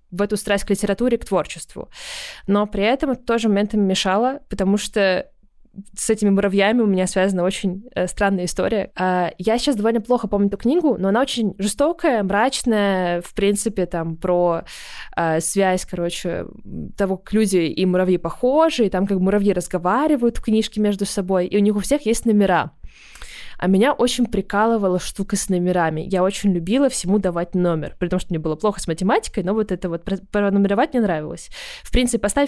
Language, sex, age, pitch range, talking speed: Russian, female, 20-39, 185-225 Hz, 175 wpm